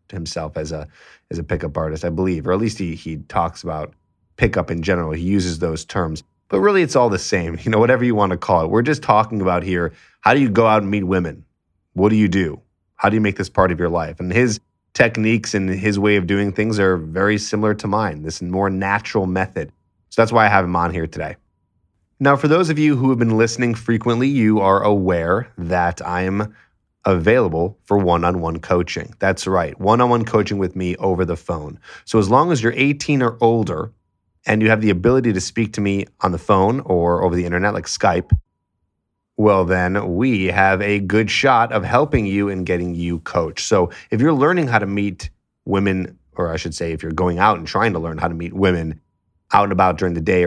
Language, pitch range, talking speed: English, 90-110 Hz, 225 wpm